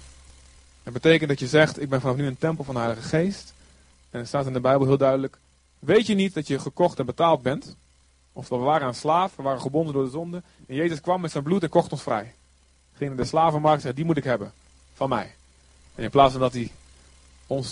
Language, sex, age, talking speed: Dutch, male, 30-49, 245 wpm